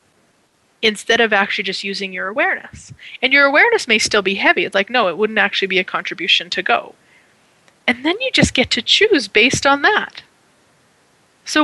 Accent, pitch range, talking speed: American, 195-280 Hz, 185 wpm